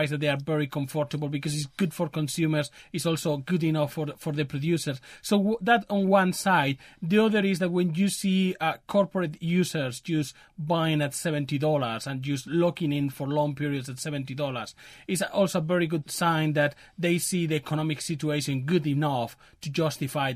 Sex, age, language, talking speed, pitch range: male, 30-49, English, 185 wpm, 140-170 Hz